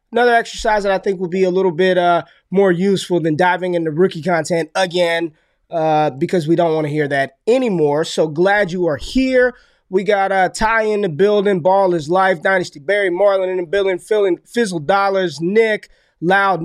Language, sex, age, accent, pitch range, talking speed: English, male, 20-39, American, 175-200 Hz, 190 wpm